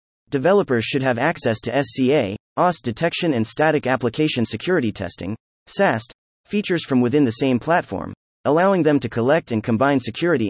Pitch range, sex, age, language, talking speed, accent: 110-155 Hz, male, 30-49, English, 155 wpm, American